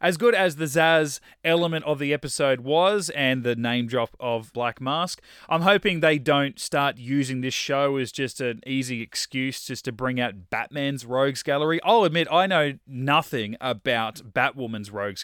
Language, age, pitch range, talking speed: English, 20-39, 125-150 Hz, 175 wpm